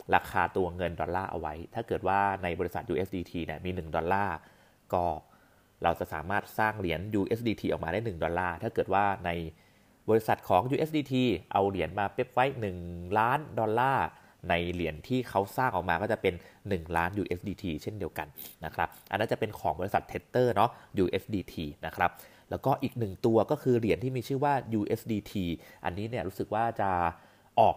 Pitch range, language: 85-115 Hz, Thai